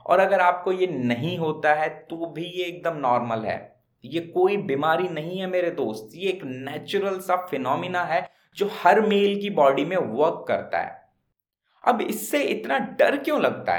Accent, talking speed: native, 180 wpm